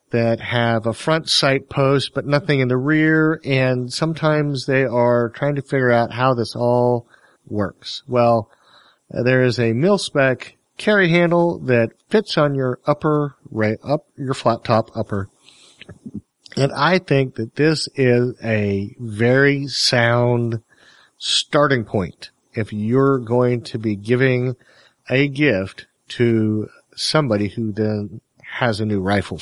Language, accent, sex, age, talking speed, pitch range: English, American, male, 40-59, 140 wpm, 110-135 Hz